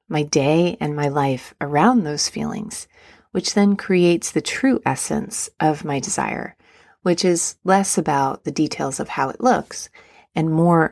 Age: 30-49